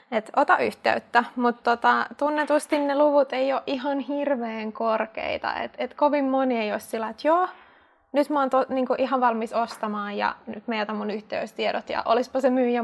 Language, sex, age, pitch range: Finnish, female, 20-39, 230-265 Hz